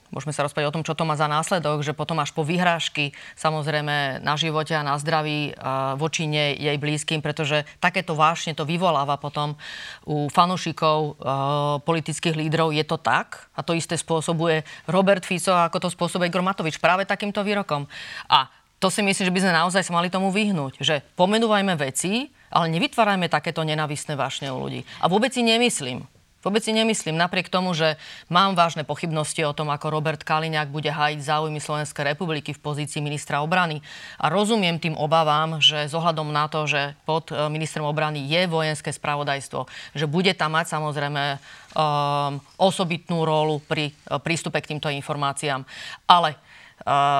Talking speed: 165 wpm